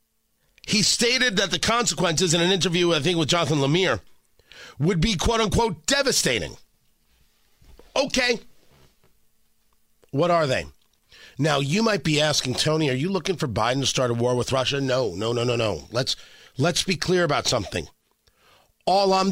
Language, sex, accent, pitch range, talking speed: English, male, American, 140-180 Hz, 160 wpm